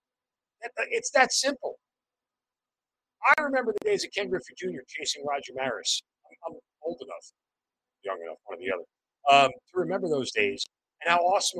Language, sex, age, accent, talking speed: English, male, 50-69, American, 165 wpm